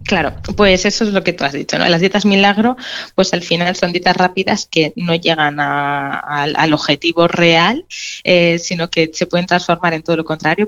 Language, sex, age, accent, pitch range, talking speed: Spanish, female, 20-39, Spanish, 155-175 Hz, 210 wpm